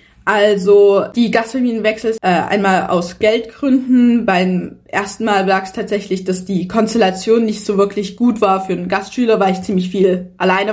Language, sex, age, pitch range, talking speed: German, female, 20-39, 180-215 Hz, 160 wpm